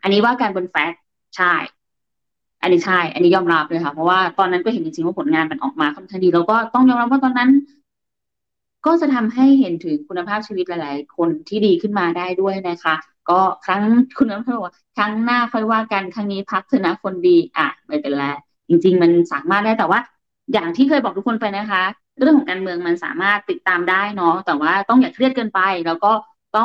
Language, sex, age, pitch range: Thai, female, 20-39, 175-240 Hz